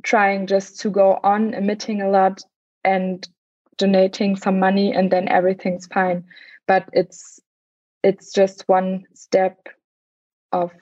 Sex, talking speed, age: female, 130 wpm, 20-39